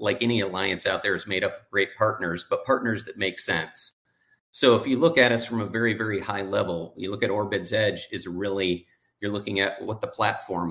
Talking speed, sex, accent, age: 230 wpm, male, American, 40-59